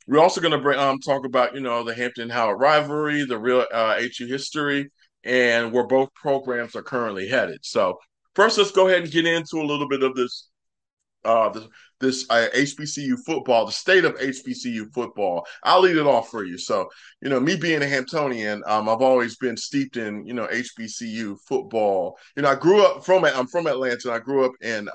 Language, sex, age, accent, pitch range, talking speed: English, male, 30-49, American, 115-140 Hz, 200 wpm